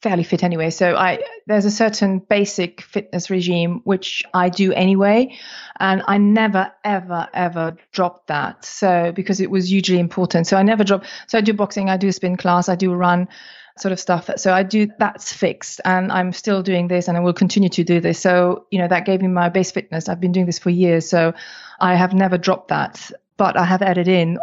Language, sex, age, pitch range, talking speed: English, female, 30-49, 175-195 Hz, 220 wpm